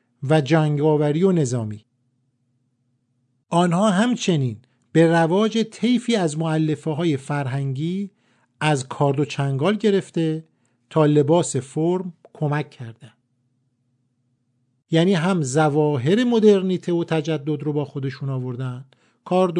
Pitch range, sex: 130-185 Hz, male